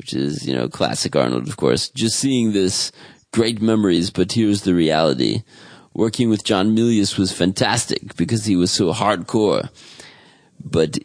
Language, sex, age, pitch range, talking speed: English, male, 40-59, 95-115 Hz, 160 wpm